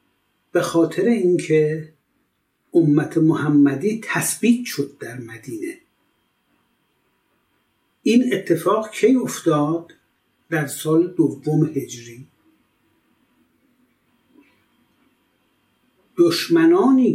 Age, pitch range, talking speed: 60-79, 150-225 Hz, 65 wpm